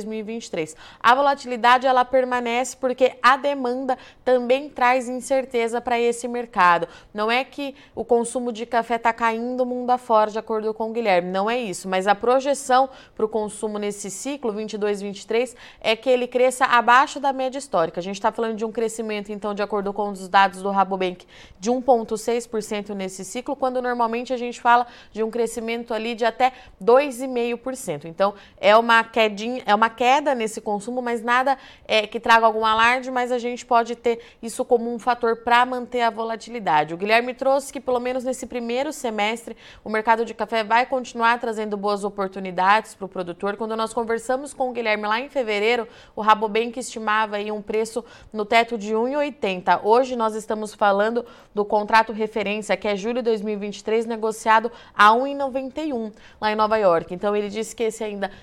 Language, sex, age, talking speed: Portuguese, female, 20-39, 180 wpm